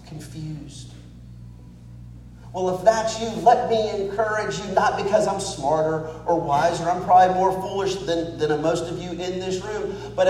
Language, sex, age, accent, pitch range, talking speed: English, male, 40-59, American, 150-200 Hz, 165 wpm